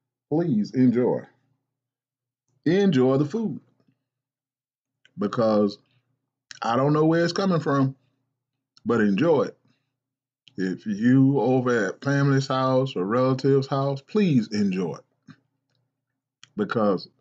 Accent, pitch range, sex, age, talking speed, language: American, 125-140 Hz, male, 30-49, 100 wpm, English